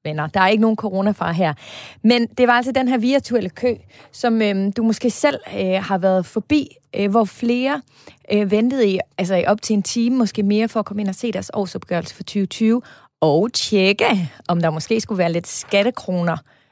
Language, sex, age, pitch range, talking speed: Danish, female, 30-49, 190-240 Hz, 200 wpm